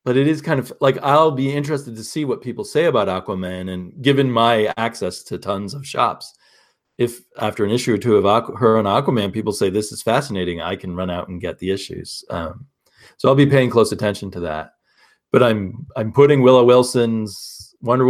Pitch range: 100-135 Hz